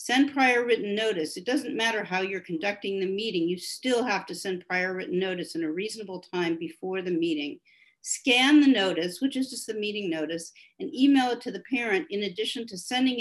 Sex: female